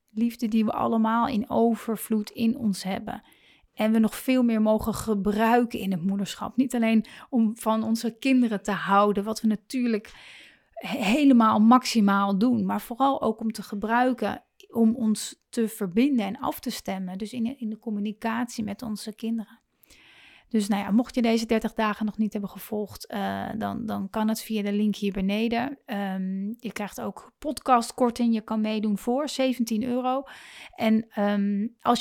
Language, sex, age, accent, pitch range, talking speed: Dutch, female, 30-49, Dutch, 210-240 Hz, 165 wpm